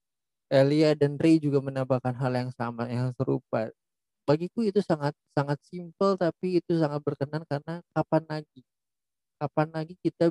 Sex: male